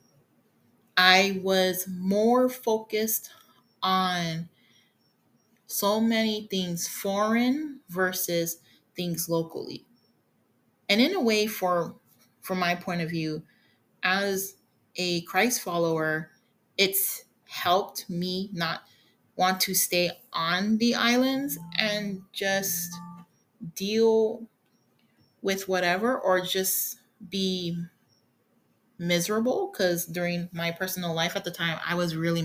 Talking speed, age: 105 wpm, 30-49